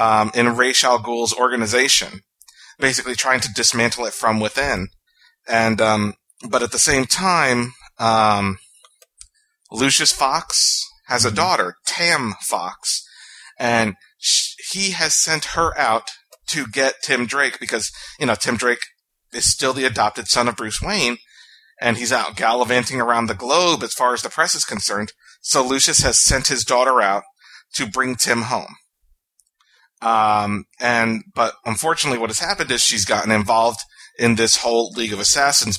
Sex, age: male, 30-49